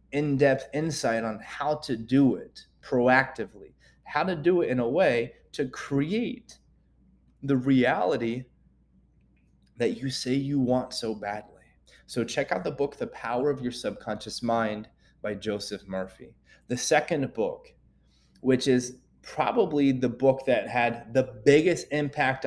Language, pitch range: English, 110-140 Hz